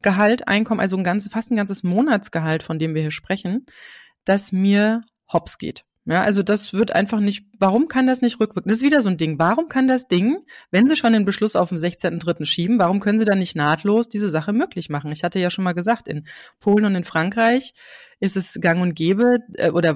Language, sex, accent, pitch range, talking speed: German, female, German, 175-220 Hz, 225 wpm